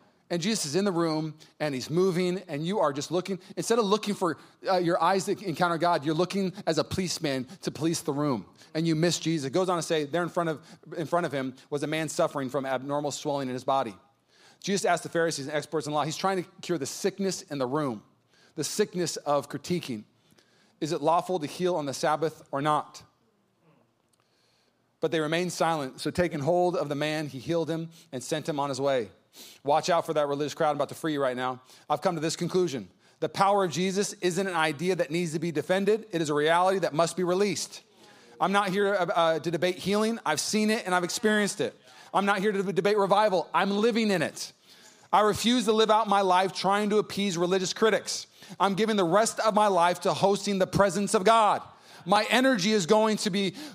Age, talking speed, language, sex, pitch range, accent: 30-49, 225 wpm, English, male, 155-200 Hz, American